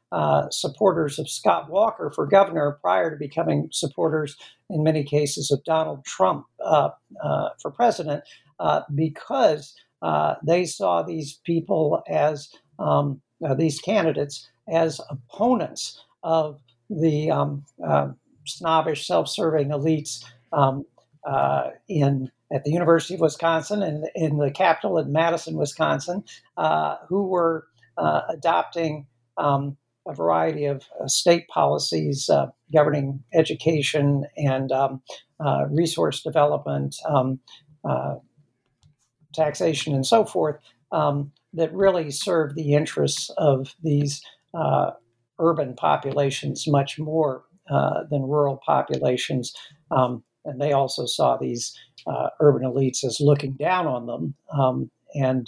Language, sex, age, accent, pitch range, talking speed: English, male, 60-79, American, 135-160 Hz, 125 wpm